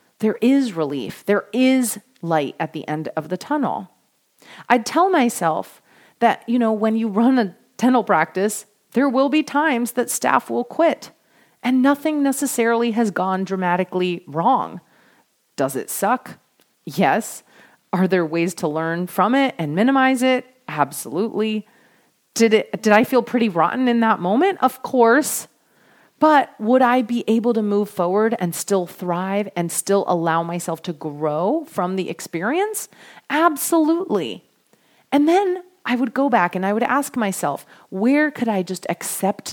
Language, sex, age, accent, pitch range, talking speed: English, female, 30-49, American, 180-255 Hz, 155 wpm